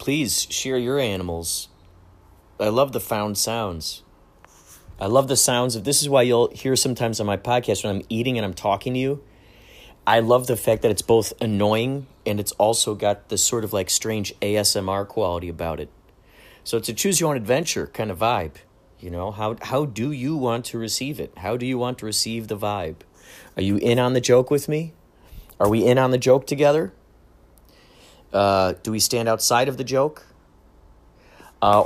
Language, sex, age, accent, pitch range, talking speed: English, male, 30-49, American, 95-125 Hz, 195 wpm